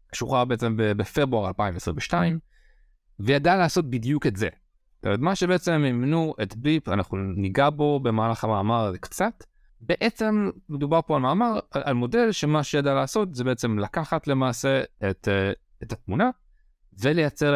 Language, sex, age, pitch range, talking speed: Hebrew, male, 30-49, 105-150 Hz, 135 wpm